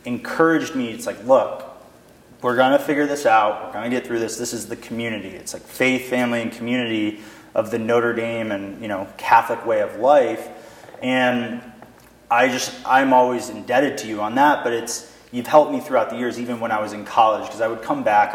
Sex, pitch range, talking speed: male, 105-130 Hz, 220 wpm